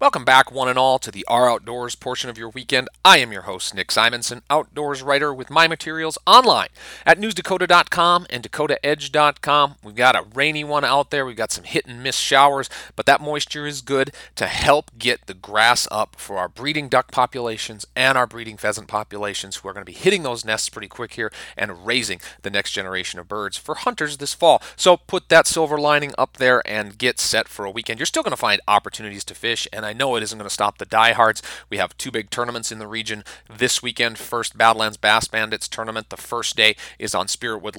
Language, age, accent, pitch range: English, 40-59, American, 105-140 Hz